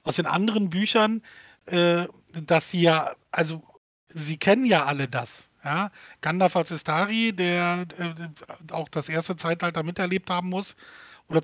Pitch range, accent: 155-190 Hz, German